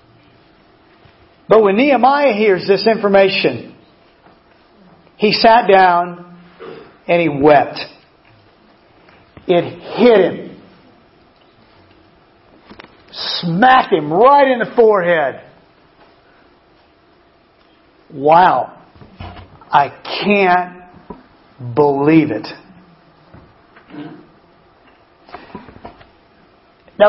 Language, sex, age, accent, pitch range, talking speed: English, male, 50-69, American, 175-245 Hz, 60 wpm